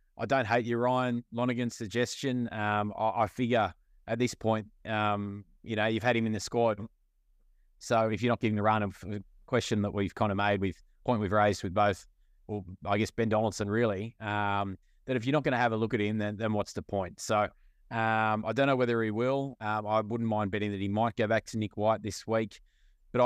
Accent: Australian